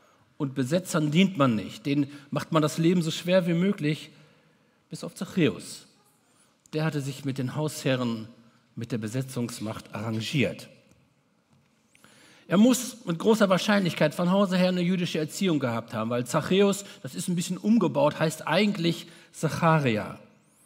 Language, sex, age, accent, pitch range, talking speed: German, male, 60-79, German, 135-190 Hz, 145 wpm